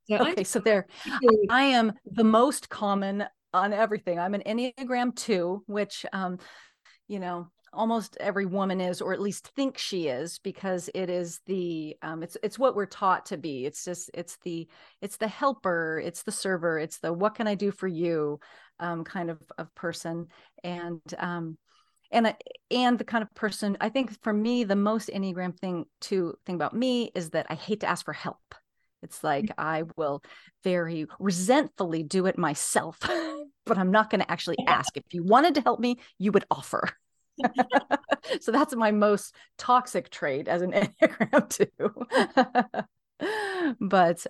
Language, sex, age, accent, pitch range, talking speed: English, female, 40-59, American, 180-235 Hz, 170 wpm